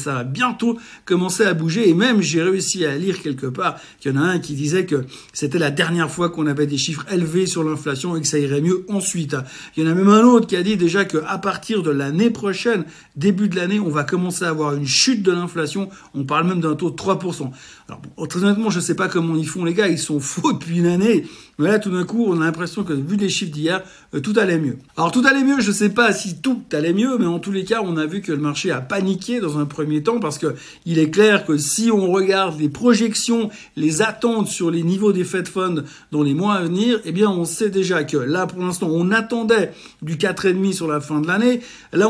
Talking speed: 260 wpm